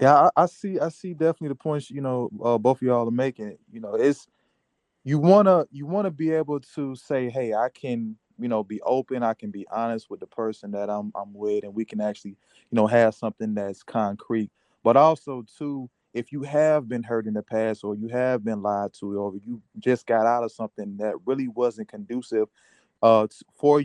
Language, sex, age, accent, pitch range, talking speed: English, male, 20-39, American, 110-135 Hz, 220 wpm